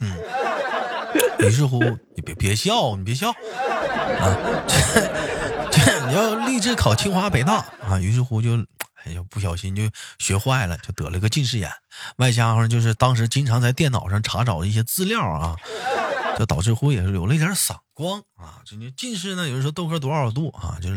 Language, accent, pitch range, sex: Chinese, native, 100-145 Hz, male